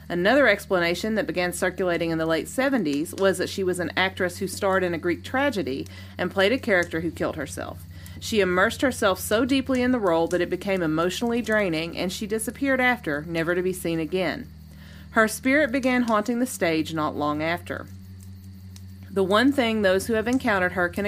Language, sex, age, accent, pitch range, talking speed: English, female, 30-49, American, 160-220 Hz, 195 wpm